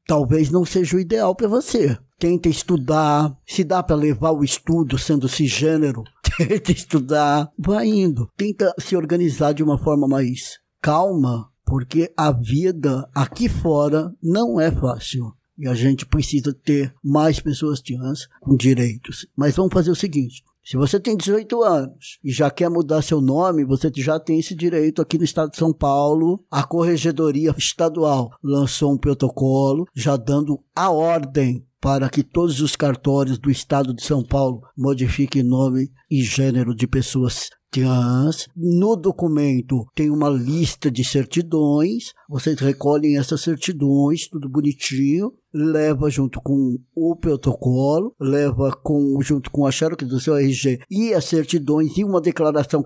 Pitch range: 135-165 Hz